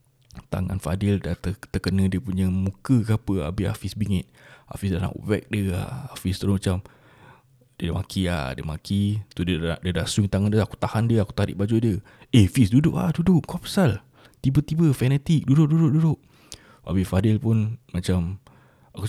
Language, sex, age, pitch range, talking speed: Malay, male, 20-39, 95-130 Hz, 180 wpm